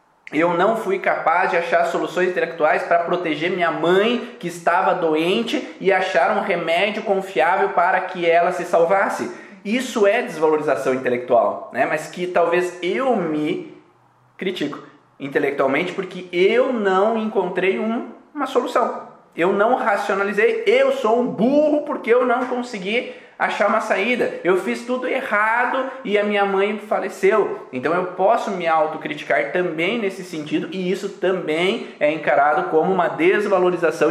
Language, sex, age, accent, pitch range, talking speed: Portuguese, male, 20-39, Brazilian, 160-225 Hz, 145 wpm